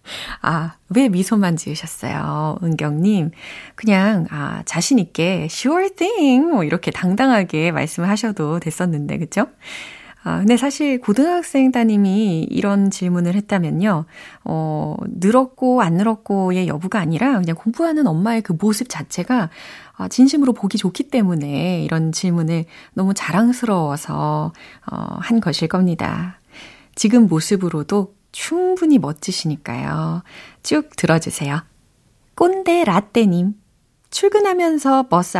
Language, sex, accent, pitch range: Korean, female, native, 165-250 Hz